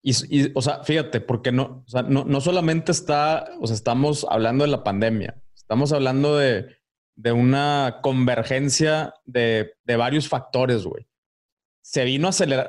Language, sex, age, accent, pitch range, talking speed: Spanish, male, 30-49, Mexican, 120-150 Hz, 165 wpm